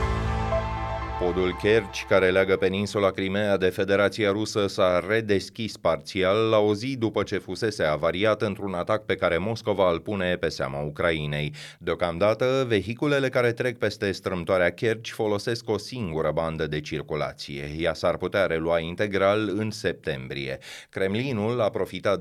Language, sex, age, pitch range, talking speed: Romanian, male, 30-49, 85-110 Hz, 140 wpm